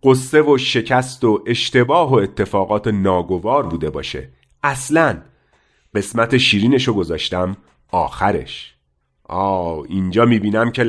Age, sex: 40-59, male